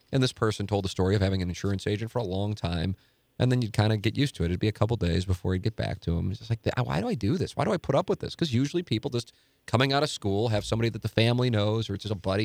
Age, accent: 40-59, American